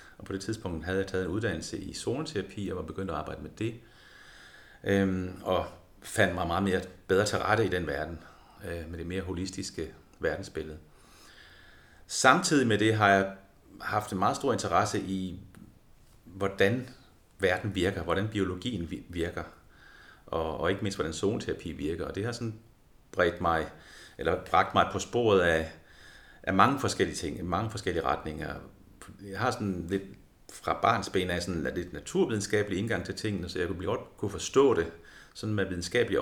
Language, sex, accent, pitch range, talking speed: Danish, male, native, 85-100 Hz, 165 wpm